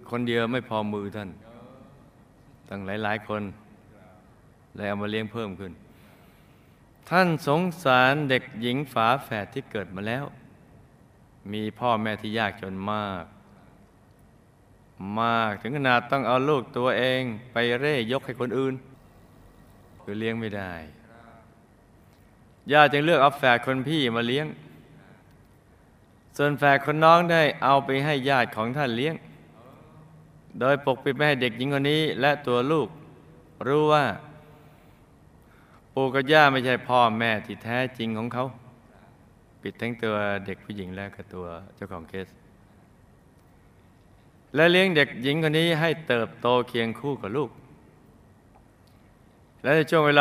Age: 20-39